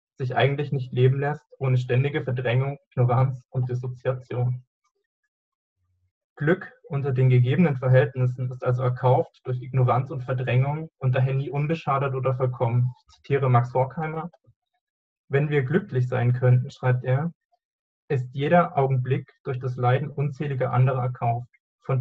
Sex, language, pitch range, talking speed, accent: male, German, 125-150 Hz, 135 wpm, German